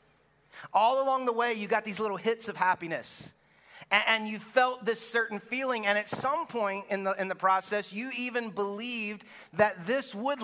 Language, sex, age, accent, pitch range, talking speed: English, male, 30-49, American, 170-215 Hz, 185 wpm